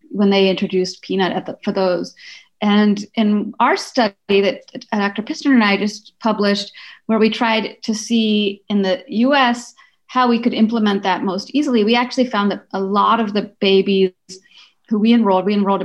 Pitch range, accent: 195-240 Hz, American